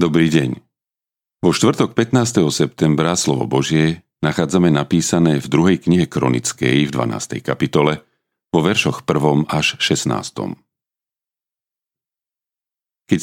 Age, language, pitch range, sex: 40-59, Slovak, 75-90 Hz, male